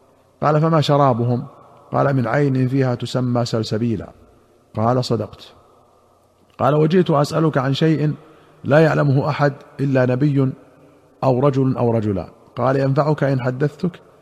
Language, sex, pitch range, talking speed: Arabic, male, 120-145 Hz, 120 wpm